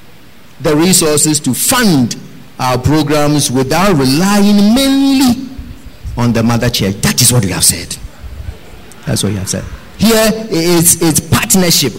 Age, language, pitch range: 50-69, English, 135-205 Hz